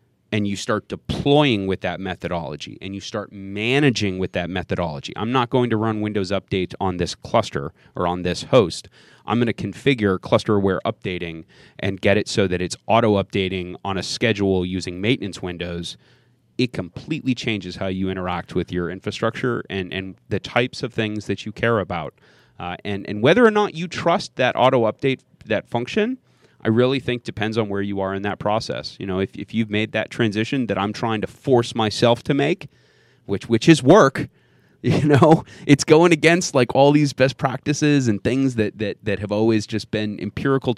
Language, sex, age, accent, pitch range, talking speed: English, male, 30-49, American, 95-125 Hz, 190 wpm